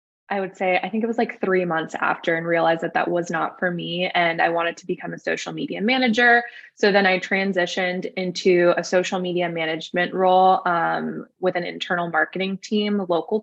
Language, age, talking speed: English, 20-39, 200 wpm